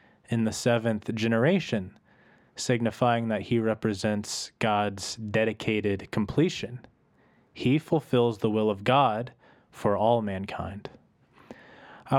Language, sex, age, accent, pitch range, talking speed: English, male, 20-39, American, 105-135 Hz, 105 wpm